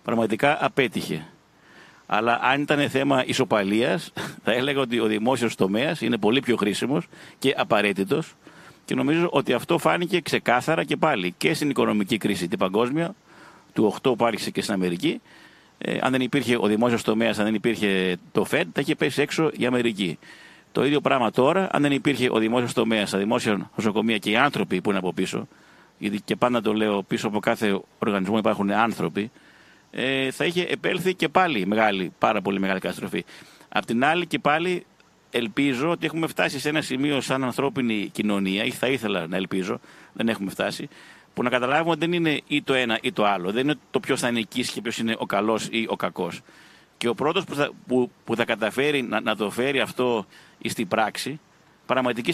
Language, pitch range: Greek, 105-140 Hz